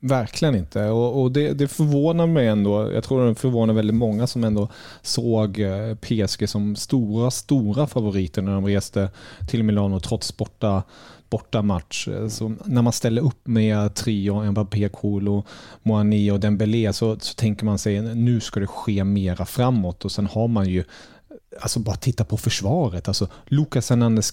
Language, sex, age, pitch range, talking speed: English, male, 30-49, 100-120 Hz, 170 wpm